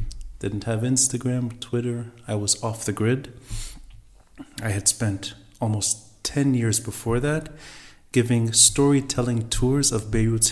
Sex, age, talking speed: male, 30-49, 125 wpm